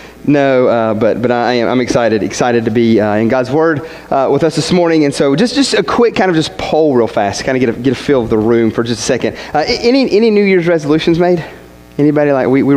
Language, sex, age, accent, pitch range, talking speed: English, male, 30-49, American, 115-165 Hz, 275 wpm